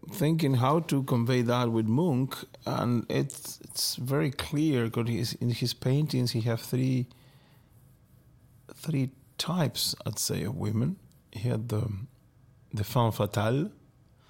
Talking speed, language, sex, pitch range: 130 wpm, Swedish, male, 110-130 Hz